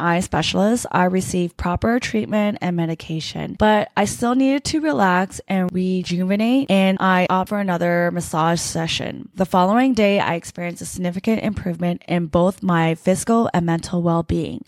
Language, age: English, 20-39